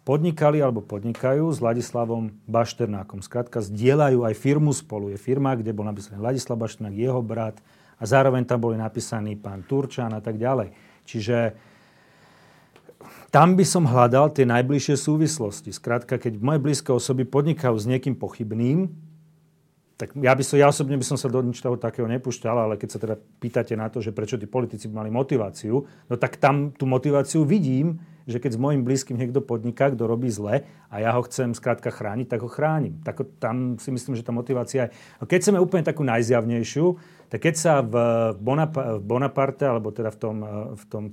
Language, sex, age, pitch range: Slovak, male, 40-59, 115-140 Hz